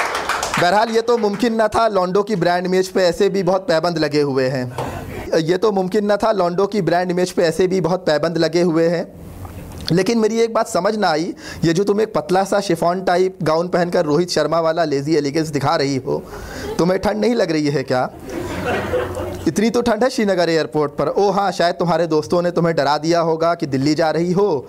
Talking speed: 215 wpm